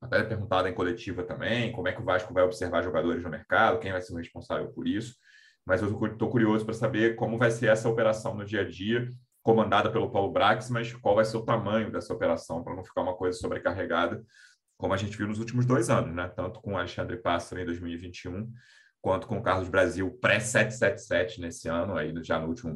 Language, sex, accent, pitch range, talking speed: Portuguese, male, Brazilian, 100-120 Hz, 220 wpm